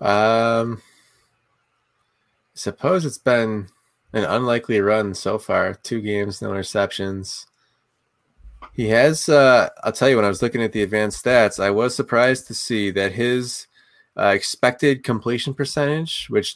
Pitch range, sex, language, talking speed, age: 105-125 Hz, male, English, 140 wpm, 20-39